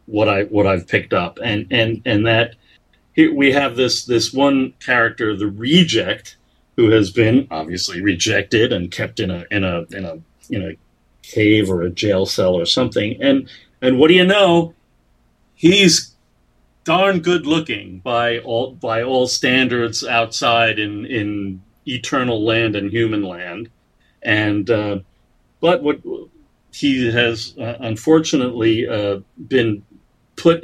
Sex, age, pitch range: male, 40-59, 100-130 Hz